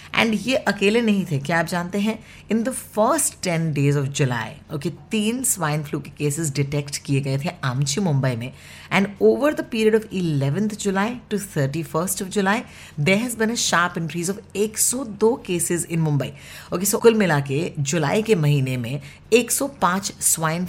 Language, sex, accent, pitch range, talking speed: English, female, Indian, 145-200 Hz, 160 wpm